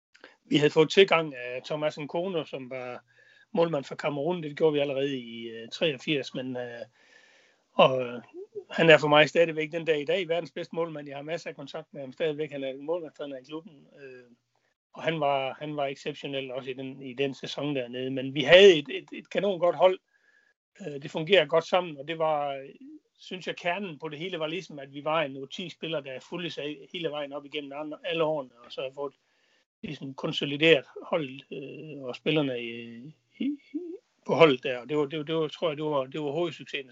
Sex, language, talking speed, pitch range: male, Danish, 210 wpm, 140-175 Hz